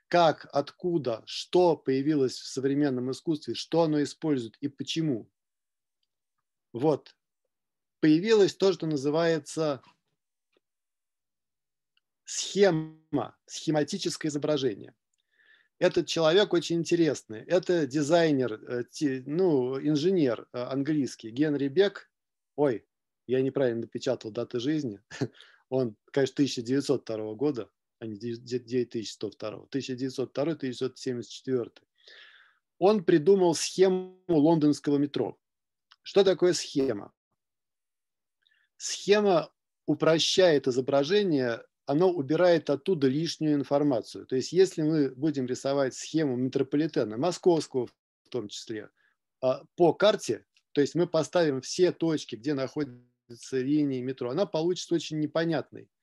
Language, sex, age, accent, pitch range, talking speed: Russian, male, 40-59, native, 130-170 Hz, 95 wpm